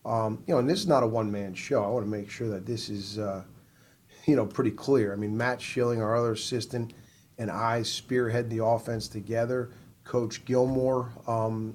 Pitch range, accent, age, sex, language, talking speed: 110-120 Hz, American, 30-49, male, English, 200 wpm